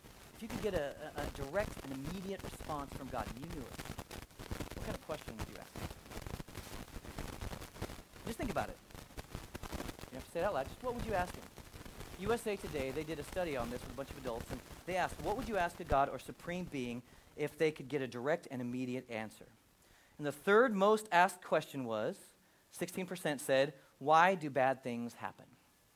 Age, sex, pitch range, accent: 40-59, male, 135-200 Hz, American